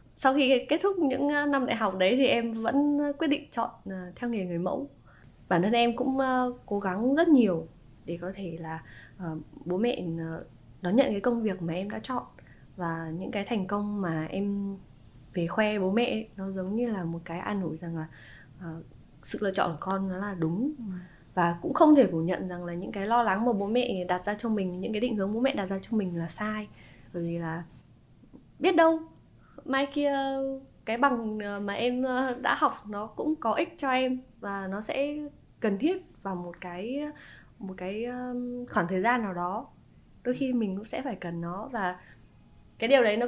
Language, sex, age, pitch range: Vietnamese, female, 20-39, 180-250 Hz